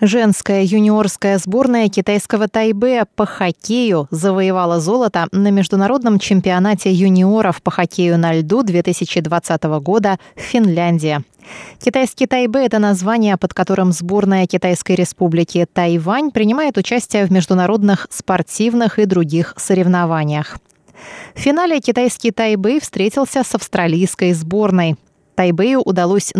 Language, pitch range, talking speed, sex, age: Russian, 170-220 Hz, 110 wpm, female, 20-39